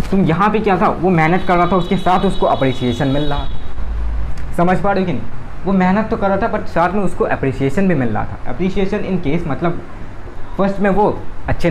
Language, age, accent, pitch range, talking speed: Hindi, 20-39, native, 115-170 Hz, 230 wpm